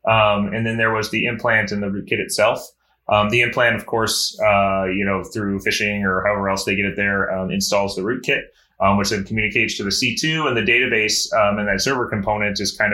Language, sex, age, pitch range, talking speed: English, male, 30-49, 100-125 Hz, 225 wpm